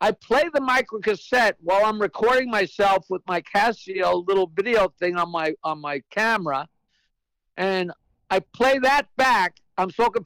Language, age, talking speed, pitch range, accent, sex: English, 60-79, 160 wpm, 180-230 Hz, American, male